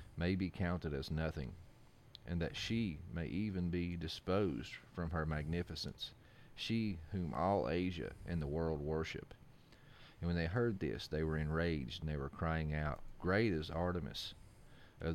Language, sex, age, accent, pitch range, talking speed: English, male, 40-59, American, 80-100 Hz, 160 wpm